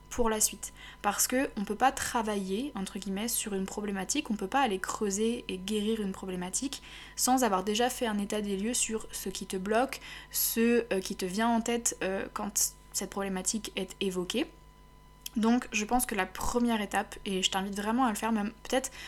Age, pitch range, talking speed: 20-39, 200-235 Hz, 210 wpm